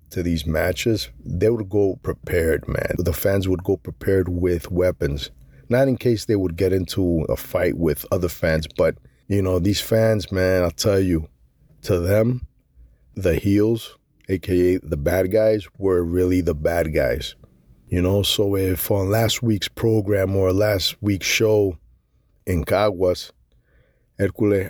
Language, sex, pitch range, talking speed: English, male, 85-100 Hz, 155 wpm